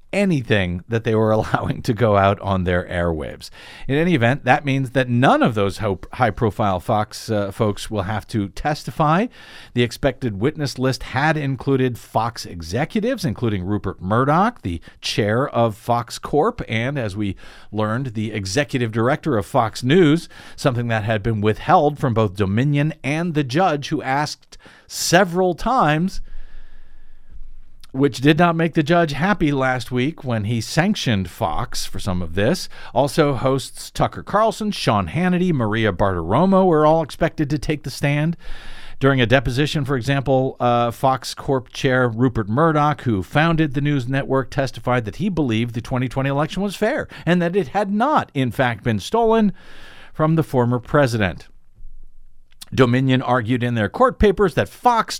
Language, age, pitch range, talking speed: English, 50-69, 110-155 Hz, 160 wpm